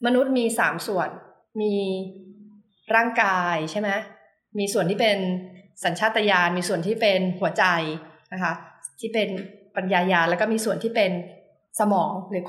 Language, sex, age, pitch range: Thai, female, 20-39, 190-230 Hz